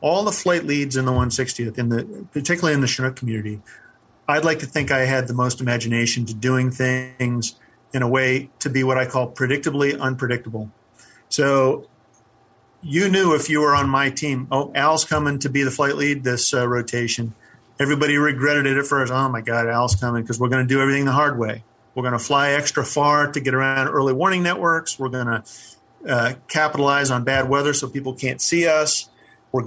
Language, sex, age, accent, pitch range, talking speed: English, male, 40-59, American, 120-140 Hz, 205 wpm